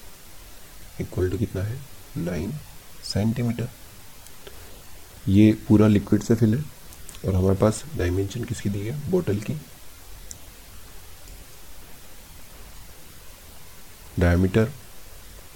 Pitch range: 85-105 Hz